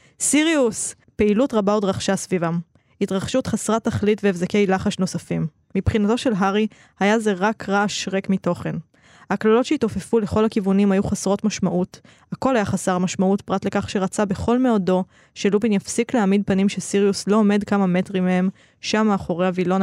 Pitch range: 185-215 Hz